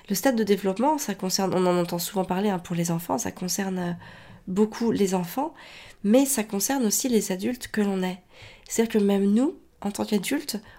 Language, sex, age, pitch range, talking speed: French, female, 30-49, 185-220 Hz, 205 wpm